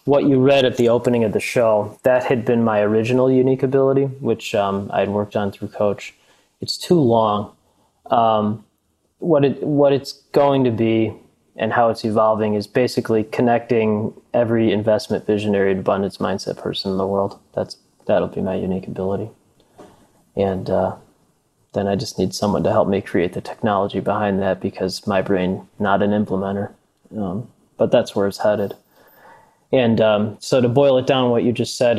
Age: 20-39